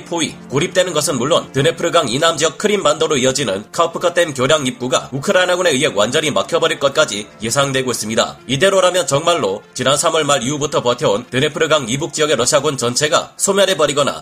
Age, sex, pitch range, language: 30-49, male, 135-170 Hz, Korean